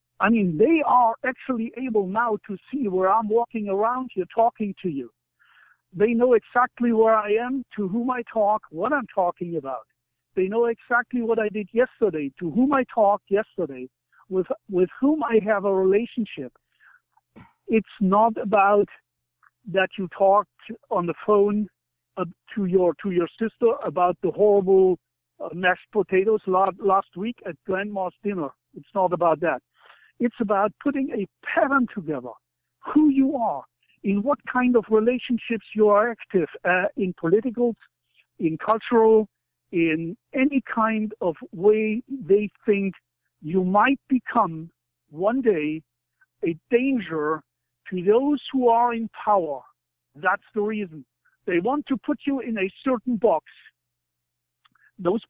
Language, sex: English, male